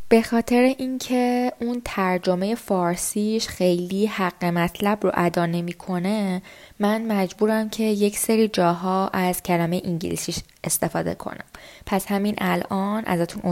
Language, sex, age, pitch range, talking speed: Persian, female, 20-39, 180-225 Hz, 120 wpm